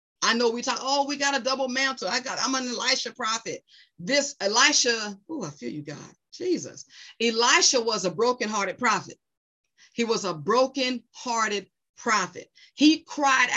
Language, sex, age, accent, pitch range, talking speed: English, female, 40-59, American, 200-265 Hz, 160 wpm